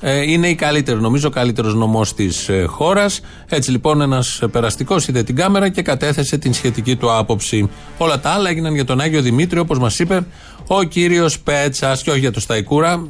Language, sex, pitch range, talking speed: Greek, male, 125-165 Hz, 190 wpm